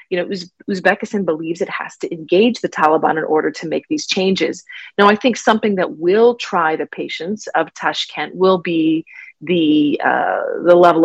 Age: 30-49